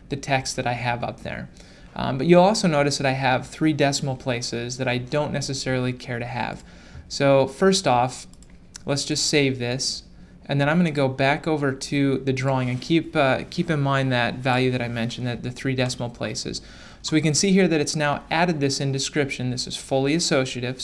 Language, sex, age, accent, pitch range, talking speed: English, male, 20-39, American, 130-145 Hz, 215 wpm